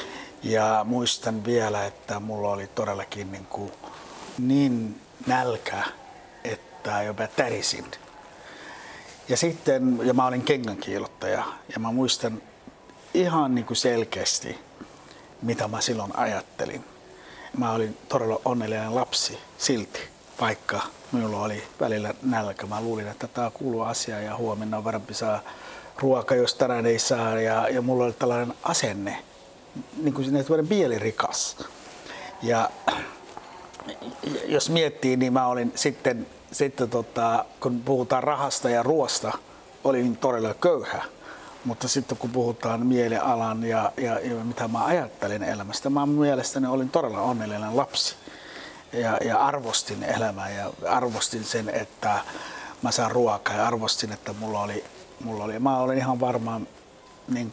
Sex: male